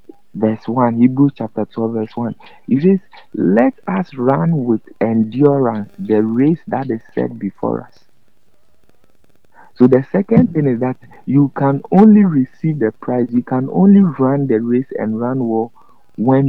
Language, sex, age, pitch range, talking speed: English, male, 50-69, 110-145 Hz, 155 wpm